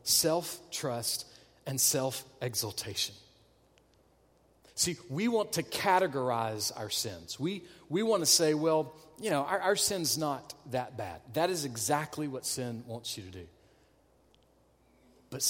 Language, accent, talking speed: English, American, 140 wpm